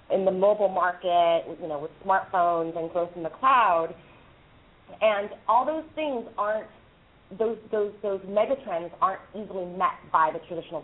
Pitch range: 165-210 Hz